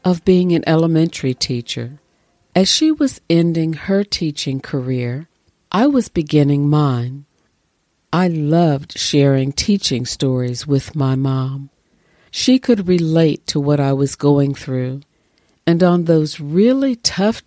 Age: 50-69